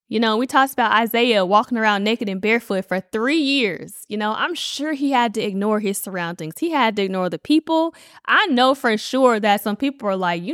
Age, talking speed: 10-29, 230 wpm